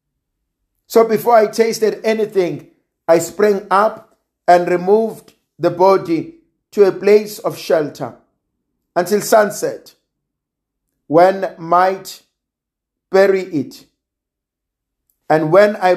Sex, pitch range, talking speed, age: male, 155-205 Hz, 100 wpm, 50-69